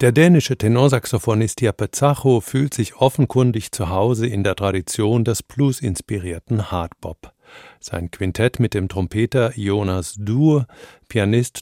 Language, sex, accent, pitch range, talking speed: German, male, German, 100-130 Hz, 120 wpm